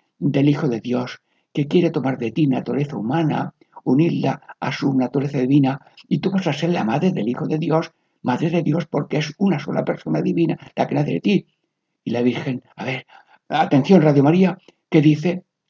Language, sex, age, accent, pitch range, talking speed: Spanish, male, 60-79, Spanish, 140-175 Hz, 195 wpm